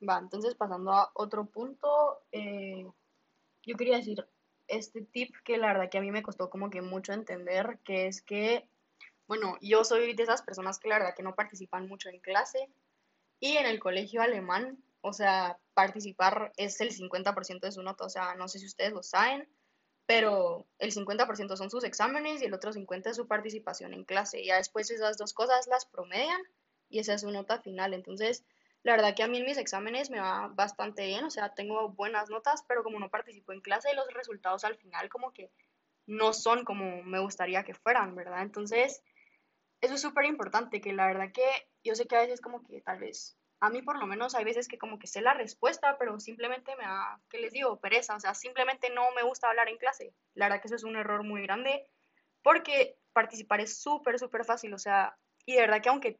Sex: female